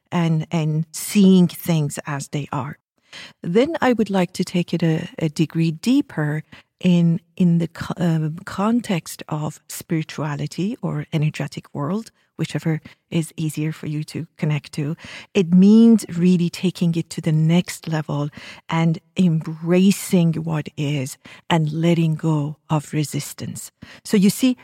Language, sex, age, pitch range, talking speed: English, female, 50-69, 155-185 Hz, 140 wpm